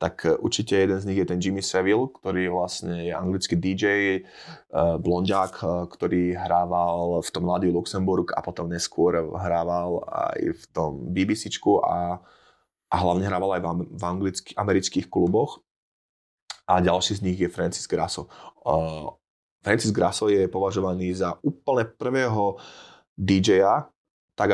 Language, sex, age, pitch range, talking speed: Slovak, male, 20-39, 85-100 Hz, 130 wpm